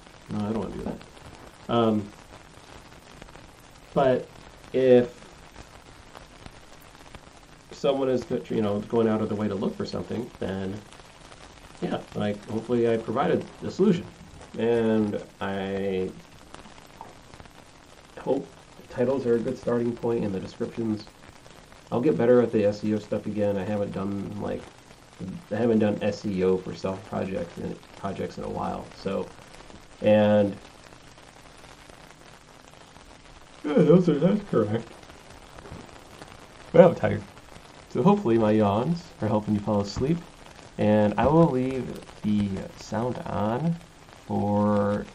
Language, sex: English, male